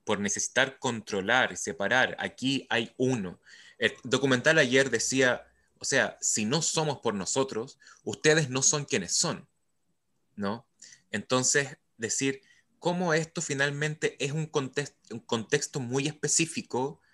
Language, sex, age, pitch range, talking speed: Spanish, male, 20-39, 120-150 Hz, 130 wpm